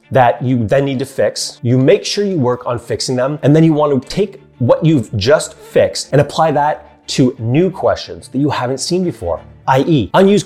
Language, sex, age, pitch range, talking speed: English, male, 30-49, 120-170 Hz, 210 wpm